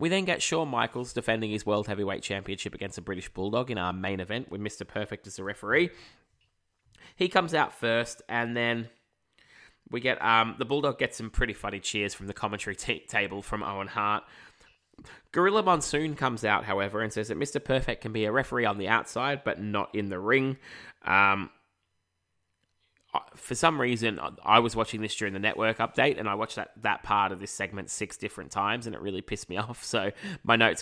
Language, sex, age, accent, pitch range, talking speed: English, male, 20-39, Australian, 100-125 Hz, 200 wpm